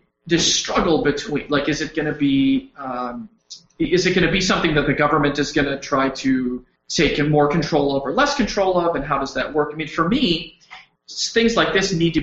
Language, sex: English, male